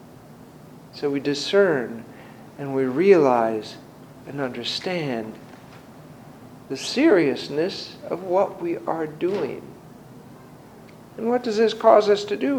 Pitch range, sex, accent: 170-255 Hz, male, American